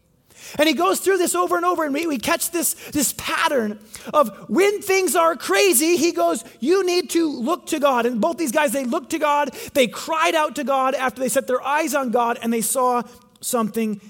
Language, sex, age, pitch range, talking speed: English, male, 30-49, 205-290 Hz, 220 wpm